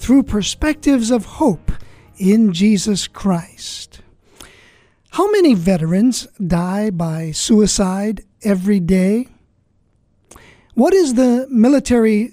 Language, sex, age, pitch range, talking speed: English, male, 50-69, 180-235 Hz, 95 wpm